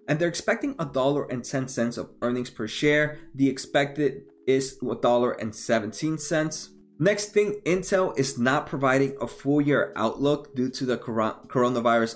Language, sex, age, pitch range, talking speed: English, male, 20-39, 120-155 Hz, 170 wpm